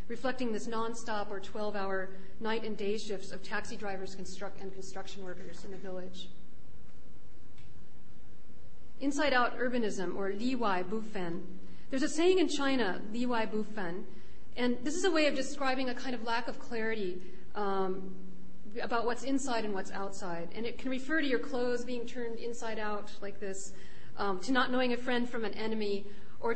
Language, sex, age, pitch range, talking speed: English, female, 40-59, 200-255 Hz, 175 wpm